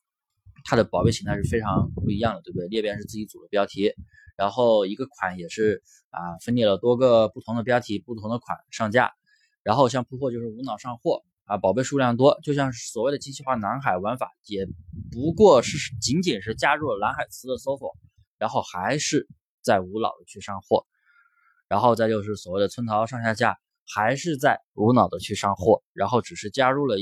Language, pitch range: Chinese, 105-140 Hz